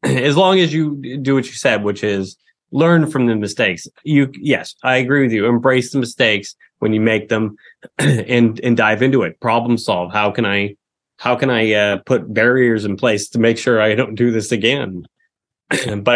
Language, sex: English, male